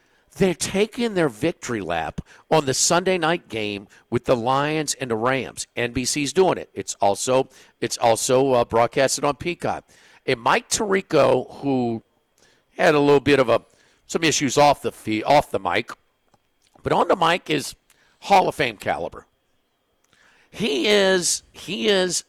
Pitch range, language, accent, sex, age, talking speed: 135-220 Hz, English, American, male, 50-69, 155 wpm